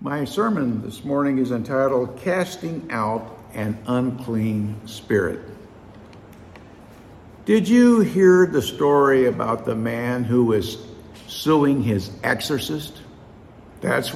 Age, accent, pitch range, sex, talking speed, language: 60-79, American, 110-150 Hz, male, 105 wpm, English